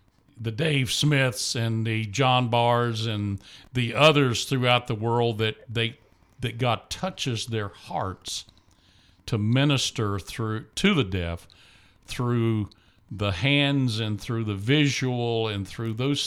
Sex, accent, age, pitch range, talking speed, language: male, American, 50-69, 105-135 Hz, 135 wpm, English